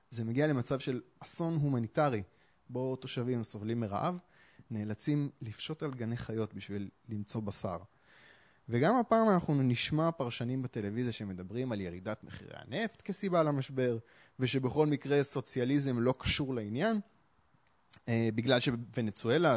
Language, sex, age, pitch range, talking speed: Hebrew, male, 20-39, 115-160 Hz, 120 wpm